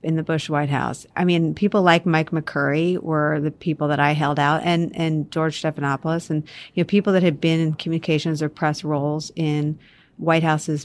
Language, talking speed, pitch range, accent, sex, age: English, 205 wpm, 155-190 Hz, American, female, 40-59